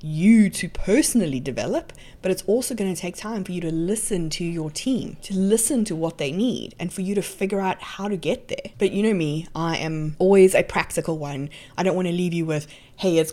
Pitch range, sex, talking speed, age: 155-190 Hz, female, 240 wpm, 20-39